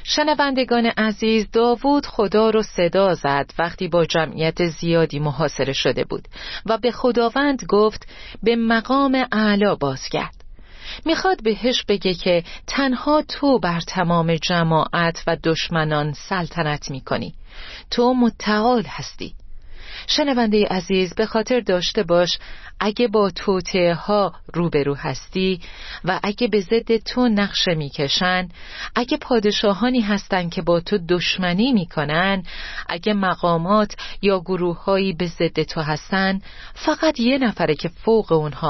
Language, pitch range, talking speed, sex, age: Persian, 170-230 Hz, 125 wpm, female, 40-59